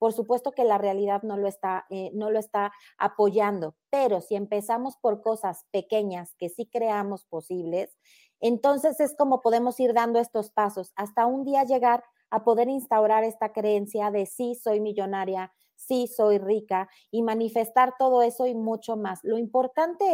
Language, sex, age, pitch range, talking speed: Spanish, female, 30-49, 210-265 Hz, 160 wpm